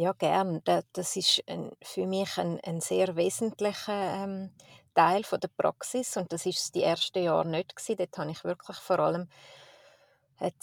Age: 30-49